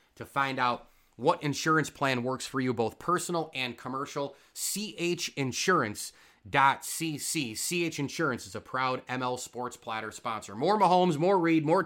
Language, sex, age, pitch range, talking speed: English, male, 30-49, 115-160 Hz, 140 wpm